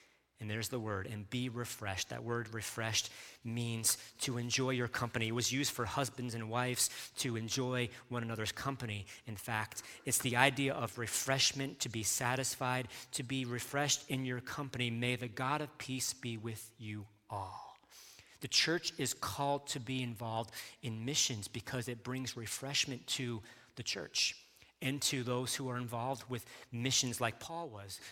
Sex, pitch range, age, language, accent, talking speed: male, 115-140 Hz, 40-59, English, American, 170 wpm